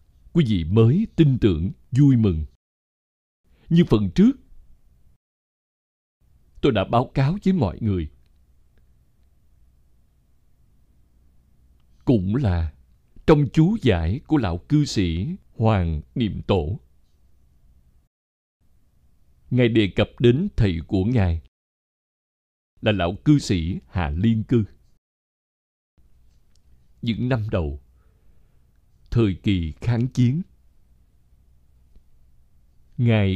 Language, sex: Vietnamese, male